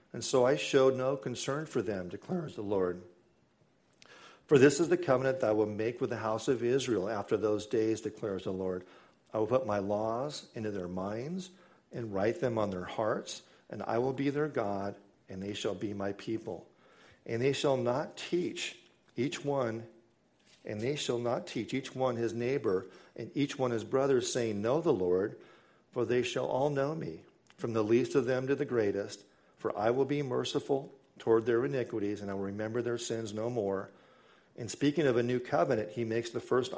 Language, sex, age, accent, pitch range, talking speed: English, male, 50-69, American, 105-130 Hz, 200 wpm